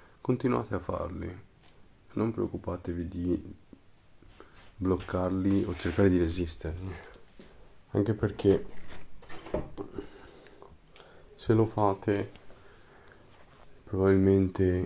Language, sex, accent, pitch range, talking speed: Italian, male, native, 85-95 Hz, 70 wpm